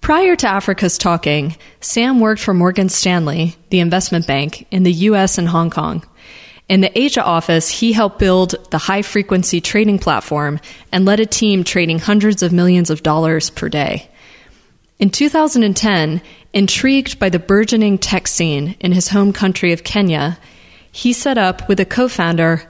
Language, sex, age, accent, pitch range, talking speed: English, female, 20-39, American, 170-205 Hz, 160 wpm